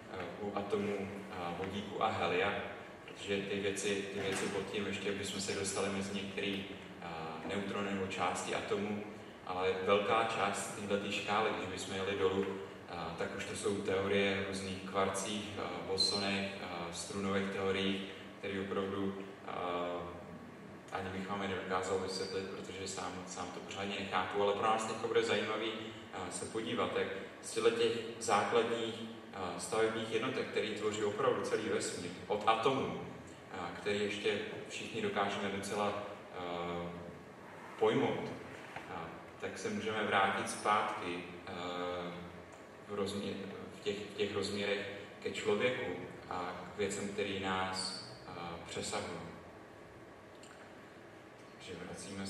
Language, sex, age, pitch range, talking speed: Czech, male, 30-49, 95-105 Hz, 115 wpm